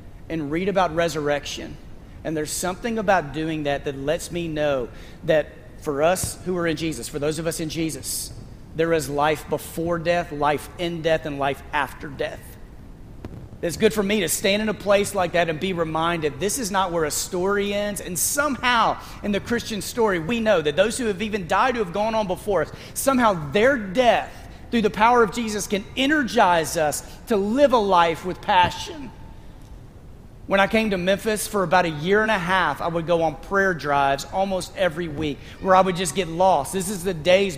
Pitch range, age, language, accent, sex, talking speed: 165-210 Hz, 40-59, English, American, male, 205 wpm